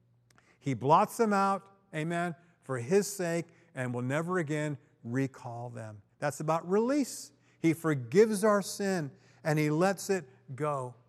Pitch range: 140-210 Hz